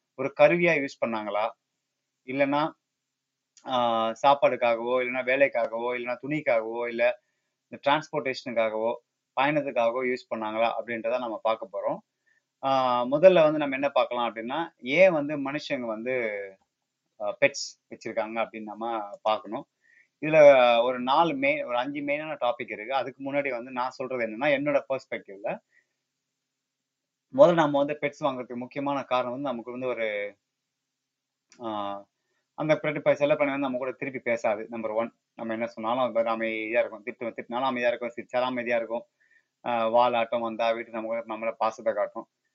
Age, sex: 30-49, male